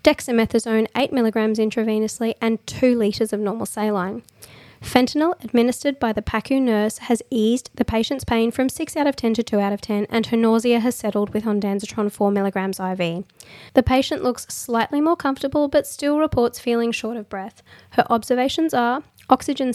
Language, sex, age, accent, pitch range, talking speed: English, female, 20-39, Australian, 215-250 Hz, 170 wpm